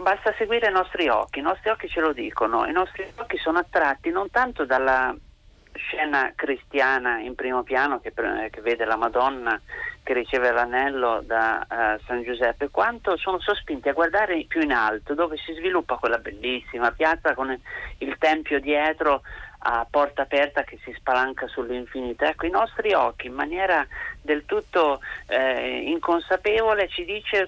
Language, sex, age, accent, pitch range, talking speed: Italian, male, 40-59, native, 130-180 Hz, 160 wpm